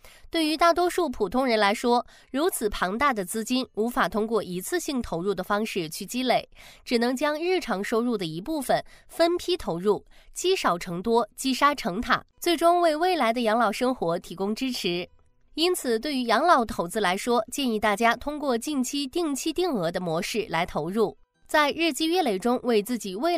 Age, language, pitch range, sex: 20-39, Chinese, 205-295 Hz, female